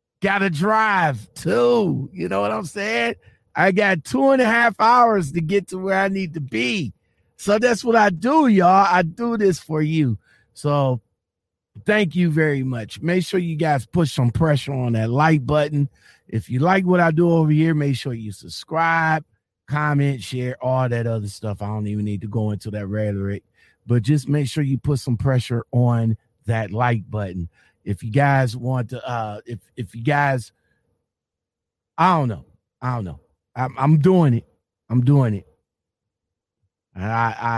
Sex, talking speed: male, 180 wpm